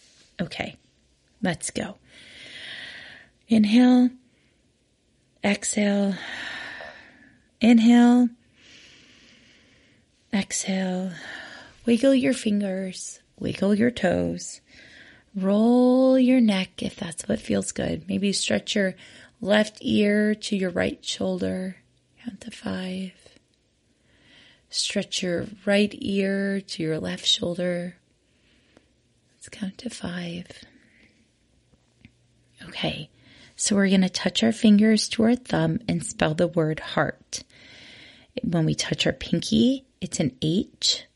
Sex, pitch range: female, 175-225 Hz